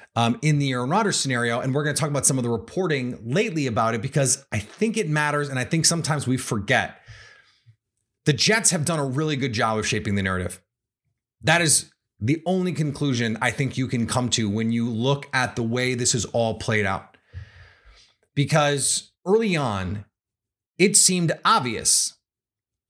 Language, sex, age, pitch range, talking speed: English, male, 30-49, 115-175 Hz, 185 wpm